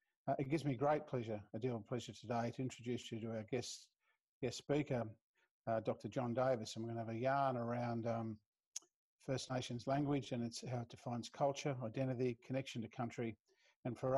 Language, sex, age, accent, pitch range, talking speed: English, male, 50-69, Australian, 115-135 Hz, 200 wpm